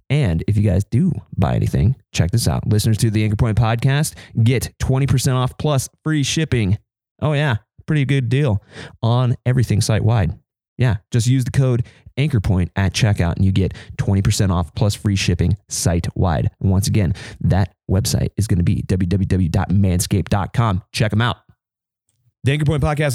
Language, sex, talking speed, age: English, male, 165 wpm, 30-49